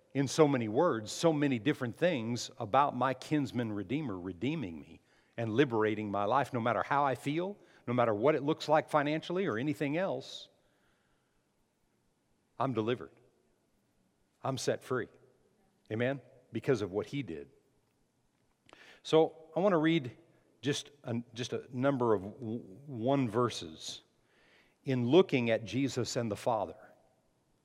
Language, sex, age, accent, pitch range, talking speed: English, male, 50-69, American, 120-155 Hz, 140 wpm